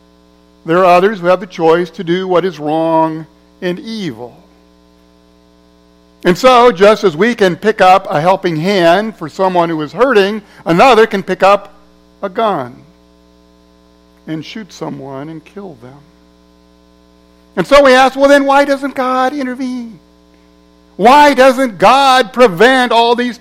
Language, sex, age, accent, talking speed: English, male, 60-79, American, 150 wpm